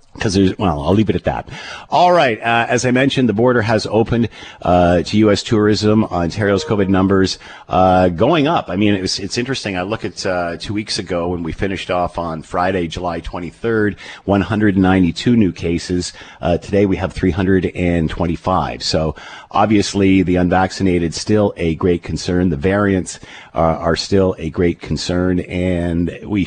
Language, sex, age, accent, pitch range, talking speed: English, male, 50-69, American, 85-110 Hz, 170 wpm